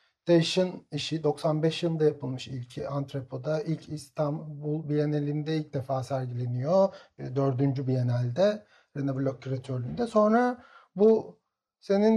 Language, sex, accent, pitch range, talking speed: Turkish, male, native, 150-200 Hz, 105 wpm